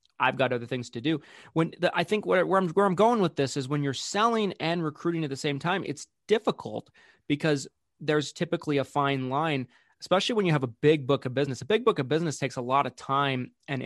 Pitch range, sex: 130-160 Hz, male